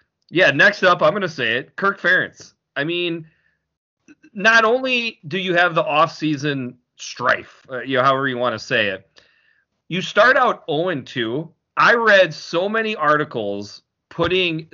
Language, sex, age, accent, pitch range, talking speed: English, male, 30-49, American, 130-195 Hz, 155 wpm